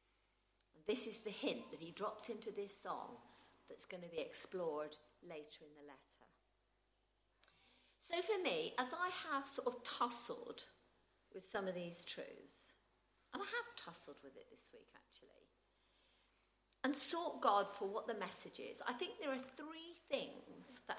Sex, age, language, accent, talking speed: female, 50-69, English, British, 165 wpm